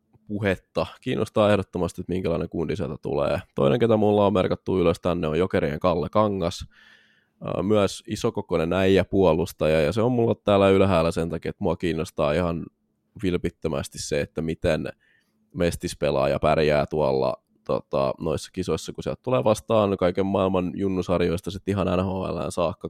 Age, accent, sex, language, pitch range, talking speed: 20-39, native, male, Finnish, 85-105 Hz, 150 wpm